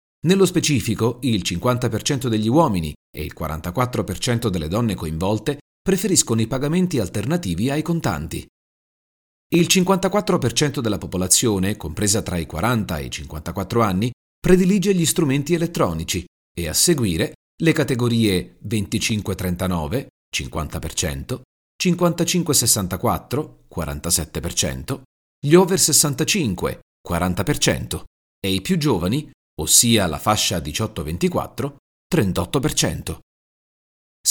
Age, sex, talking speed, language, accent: 40-59, male, 100 wpm, Italian, native